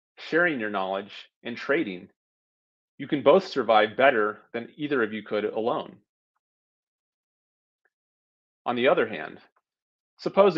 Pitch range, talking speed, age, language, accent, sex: 105-150 Hz, 120 wpm, 30-49, English, American, male